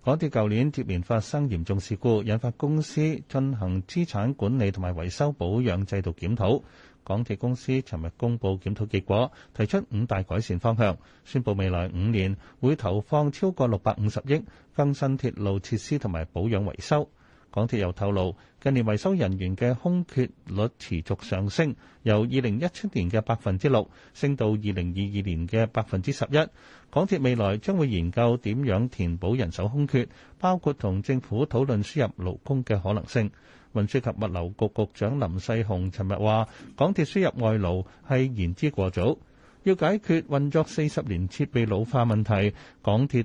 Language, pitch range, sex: Chinese, 100-140 Hz, male